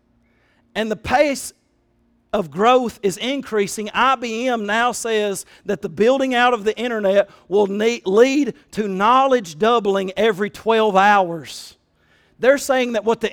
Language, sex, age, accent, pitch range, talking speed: English, male, 40-59, American, 180-225 Hz, 135 wpm